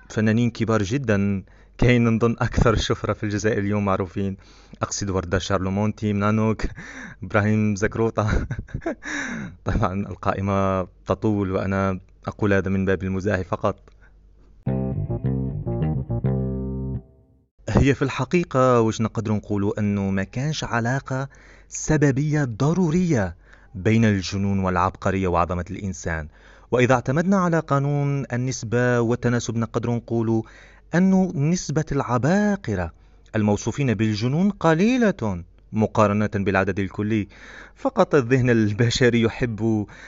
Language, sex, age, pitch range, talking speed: Arabic, male, 20-39, 100-130 Hz, 100 wpm